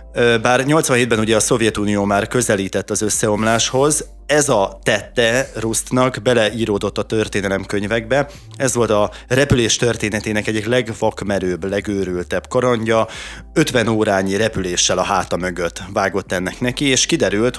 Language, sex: Hungarian, male